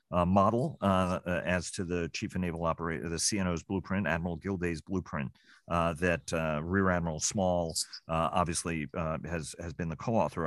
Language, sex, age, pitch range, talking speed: English, male, 40-59, 85-105 Hz, 180 wpm